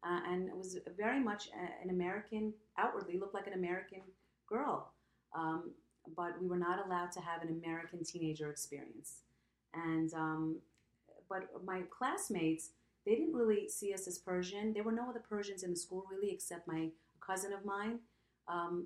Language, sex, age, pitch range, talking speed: English, female, 30-49, 165-200 Hz, 170 wpm